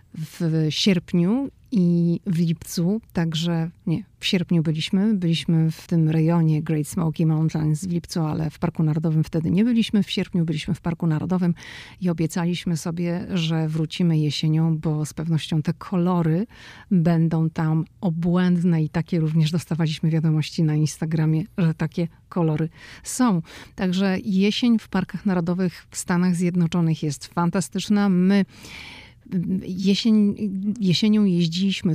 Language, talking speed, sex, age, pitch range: Polish, 130 wpm, female, 40-59, 160-185 Hz